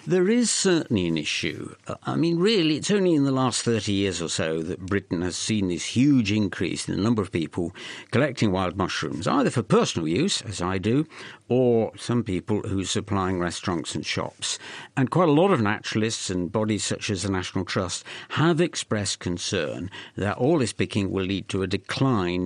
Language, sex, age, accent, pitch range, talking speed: English, male, 60-79, British, 100-165 Hz, 195 wpm